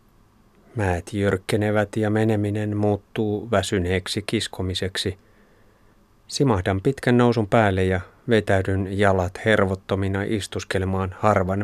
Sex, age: male, 30-49